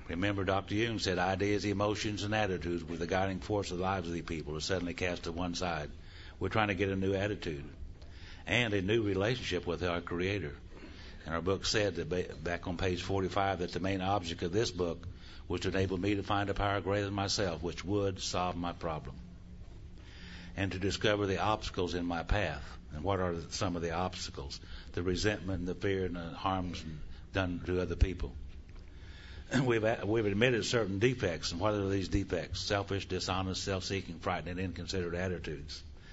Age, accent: 60-79, American